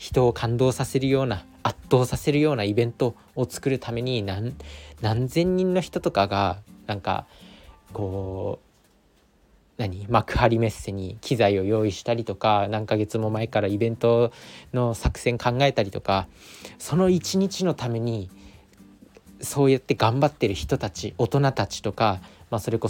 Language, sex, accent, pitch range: Japanese, male, native, 100-130 Hz